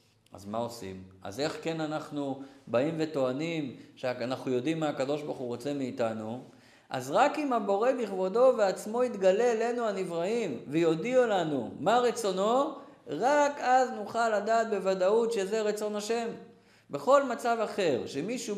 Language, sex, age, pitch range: Hebrew, male, 50-69, 160-235 Hz